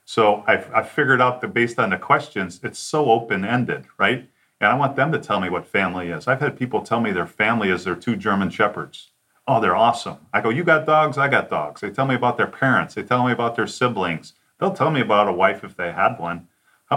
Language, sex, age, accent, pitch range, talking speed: English, male, 40-59, American, 95-120 Hz, 245 wpm